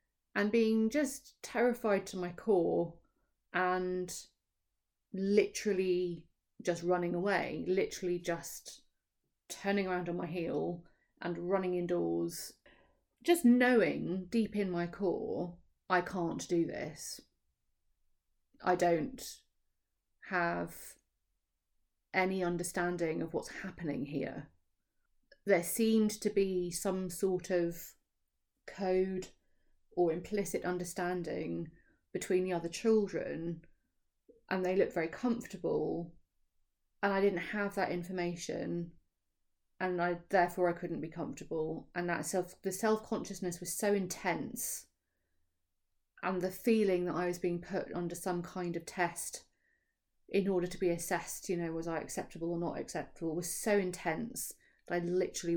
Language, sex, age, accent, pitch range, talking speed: English, female, 30-49, British, 170-195 Hz, 125 wpm